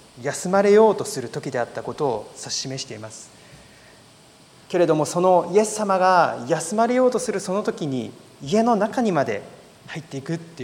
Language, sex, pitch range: Japanese, male, 135-185 Hz